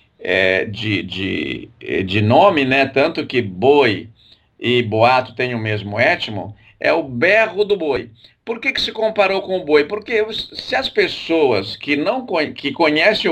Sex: male